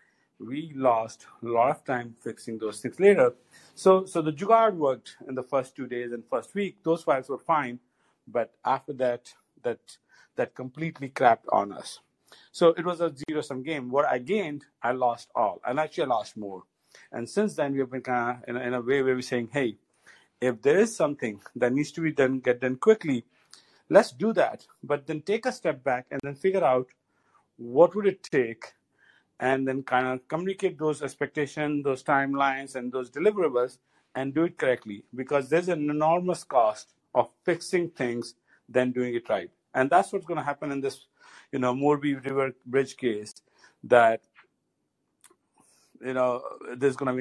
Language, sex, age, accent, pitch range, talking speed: English, male, 50-69, Indian, 125-165 Hz, 185 wpm